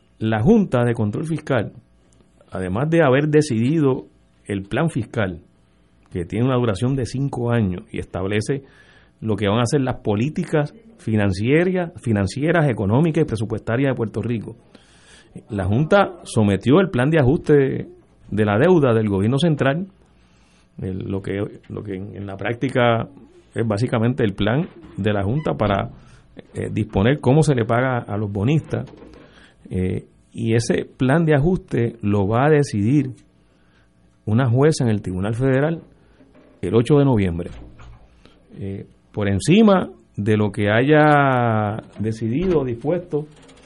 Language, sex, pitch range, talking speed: Spanish, male, 100-140 Hz, 140 wpm